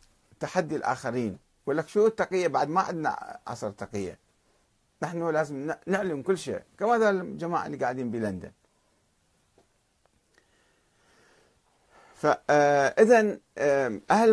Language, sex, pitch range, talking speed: Arabic, male, 115-165 Hz, 95 wpm